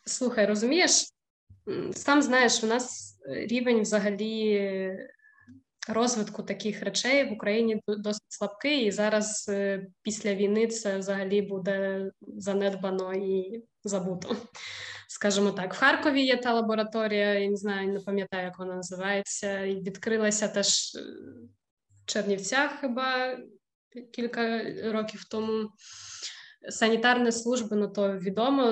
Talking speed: 115 wpm